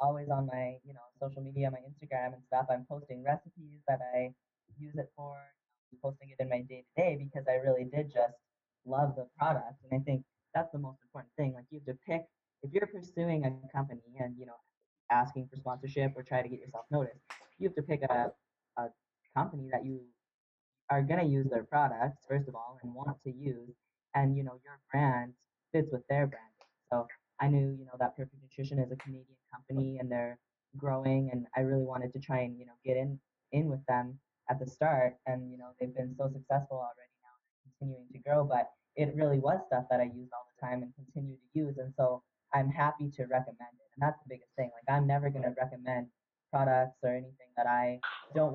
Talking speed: 215 wpm